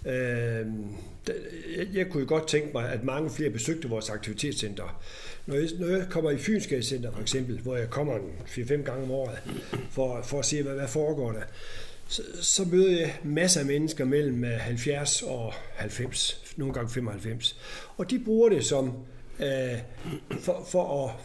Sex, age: male, 60-79